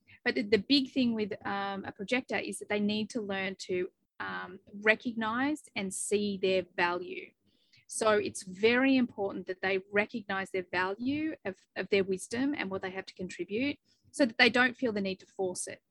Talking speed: 190 wpm